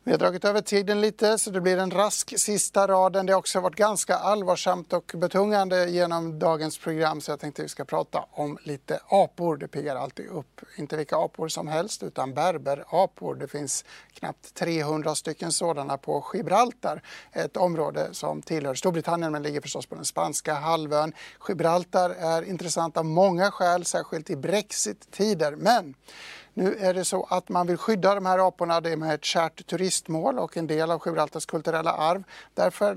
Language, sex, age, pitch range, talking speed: English, male, 60-79, 160-195 Hz, 180 wpm